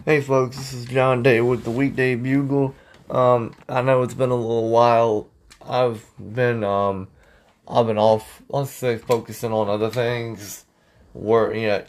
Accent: American